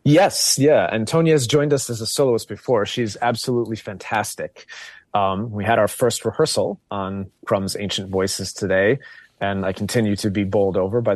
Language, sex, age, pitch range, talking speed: English, male, 30-49, 95-115 Hz, 170 wpm